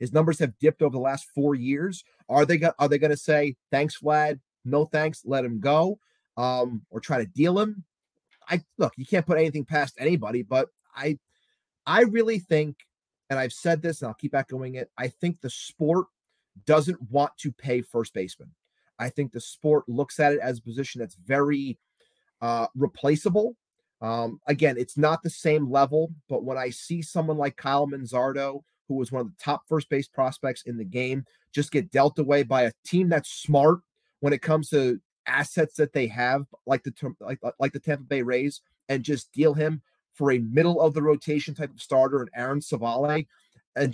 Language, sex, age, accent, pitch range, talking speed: English, male, 30-49, American, 135-160 Hz, 190 wpm